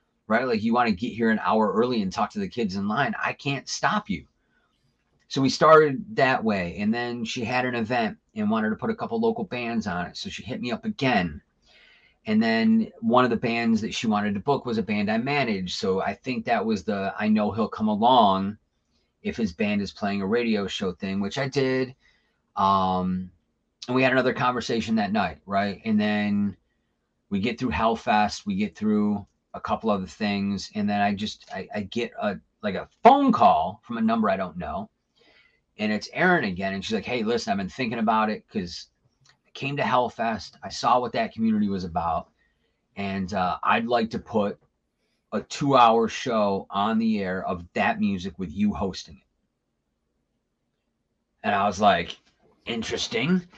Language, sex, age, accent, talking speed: English, male, 30-49, American, 200 wpm